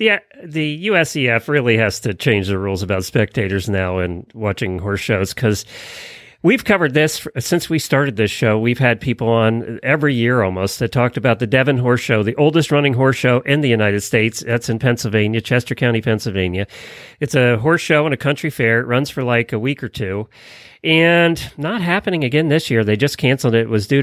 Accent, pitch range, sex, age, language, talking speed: American, 115-150 Hz, male, 40-59, English, 205 wpm